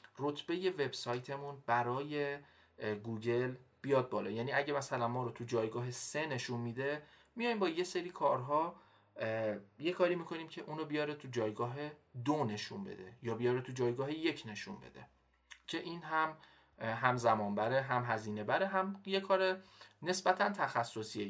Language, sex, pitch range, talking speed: Persian, male, 115-150 Hz, 150 wpm